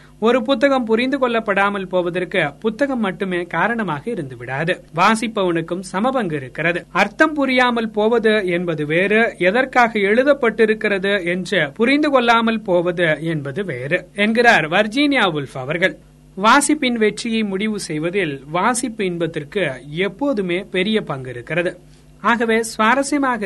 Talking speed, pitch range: 105 wpm, 175-230 Hz